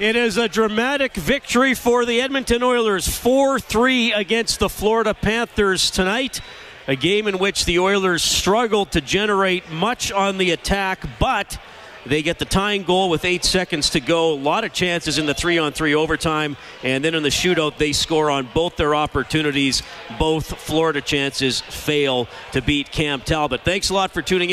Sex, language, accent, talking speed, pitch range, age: male, English, American, 175 wpm, 135-180 Hz, 40-59